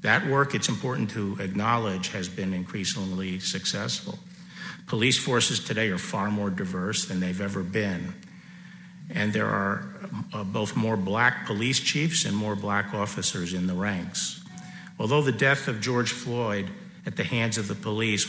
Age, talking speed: 50-69, 160 wpm